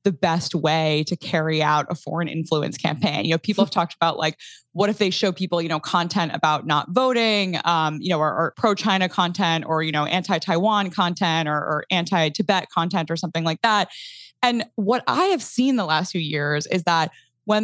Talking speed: 205 wpm